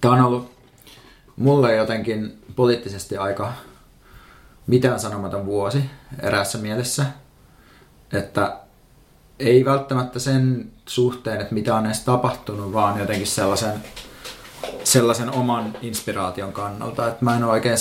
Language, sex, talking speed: Finnish, male, 115 wpm